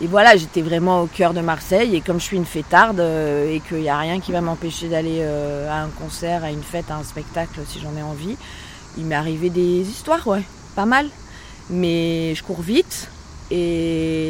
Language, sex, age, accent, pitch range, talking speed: French, female, 30-49, French, 150-190 Hz, 205 wpm